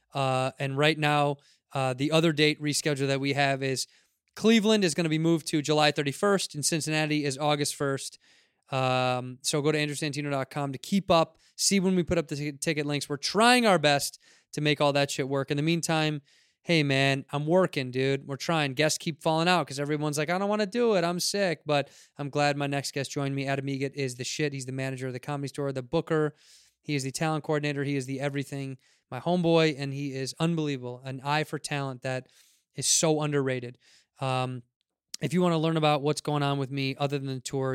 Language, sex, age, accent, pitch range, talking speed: English, male, 20-39, American, 135-155 Hz, 220 wpm